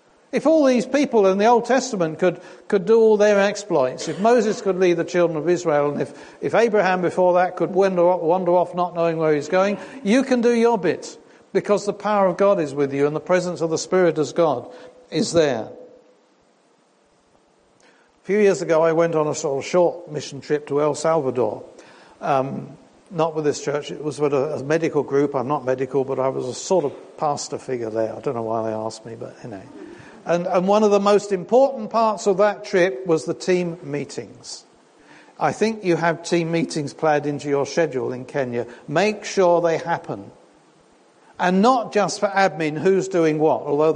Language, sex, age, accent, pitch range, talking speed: English, male, 60-79, British, 150-200 Hz, 205 wpm